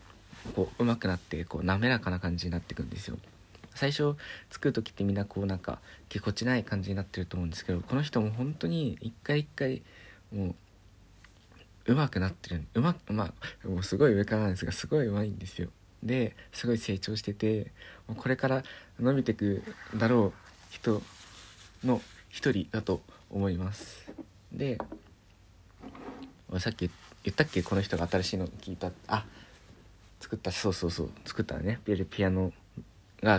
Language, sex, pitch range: Japanese, male, 95-115 Hz